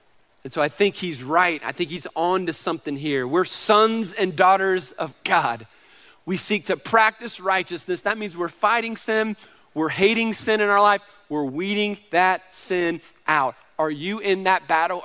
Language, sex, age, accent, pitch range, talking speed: English, male, 30-49, American, 170-210 Hz, 180 wpm